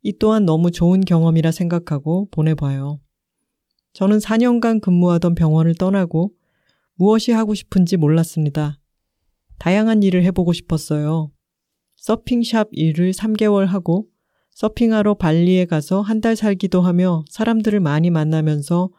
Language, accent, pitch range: Korean, native, 160-200 Hz